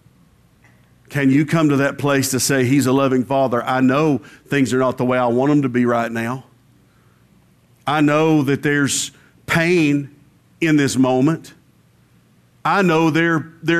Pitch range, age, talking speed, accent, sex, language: 115-165 Hz, 50-69, 165 wpm, American, male, English